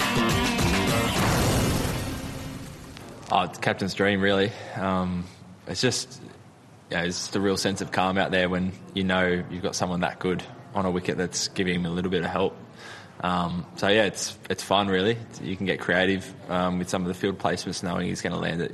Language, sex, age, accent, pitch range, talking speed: English, male, 20-39, Australian, 90-100 Hz, 200 wpm